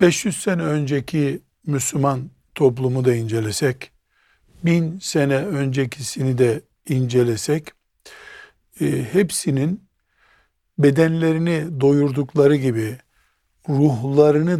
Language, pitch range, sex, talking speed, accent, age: Turkish, 130-170 Hz, male, 70 wpm, native, 60-79